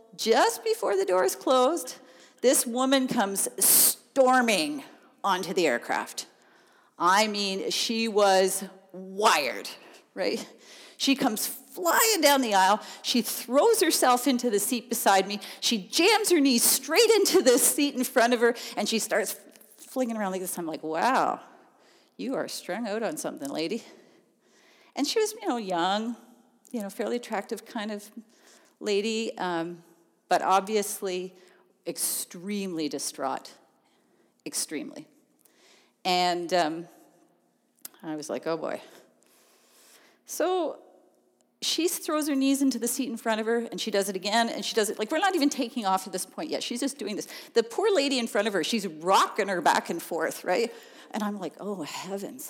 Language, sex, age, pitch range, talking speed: English, female, 40-59, 195-270 Hz, 160 wpm